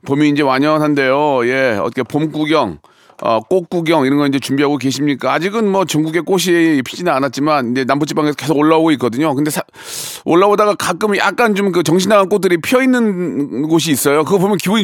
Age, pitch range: 40-59, 135-175 Hz